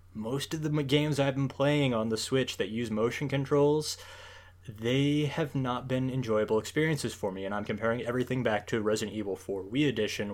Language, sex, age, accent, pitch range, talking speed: English, male, 20-39, American, 105-135 Hz, 190 wpm